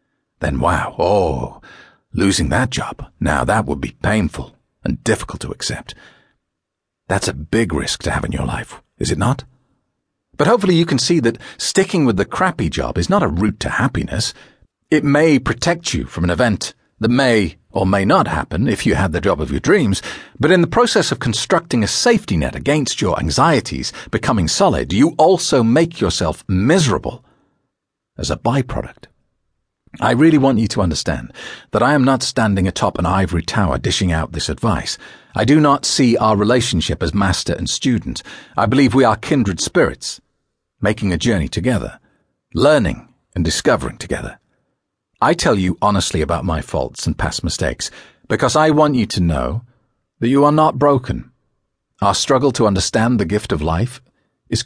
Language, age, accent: English, 50-69, British